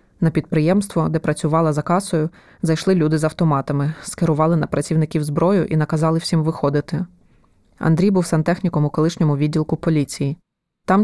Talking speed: 140 wpm